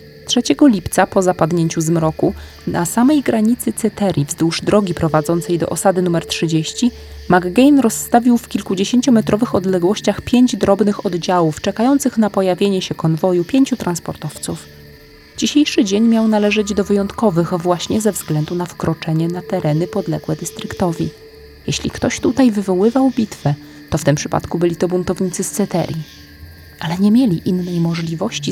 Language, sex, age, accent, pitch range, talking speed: Polish, female, 20-39, native, 160-210 Hz, 135 wpm